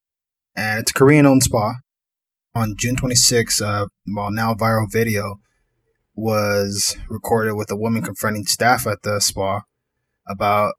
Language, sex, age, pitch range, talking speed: English, male, 20-39, 100-120 Hz, 135 wpm